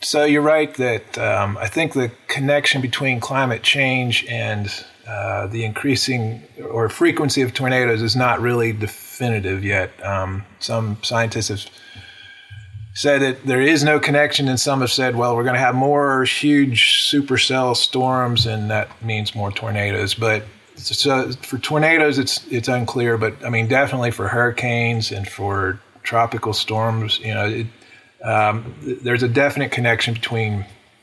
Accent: American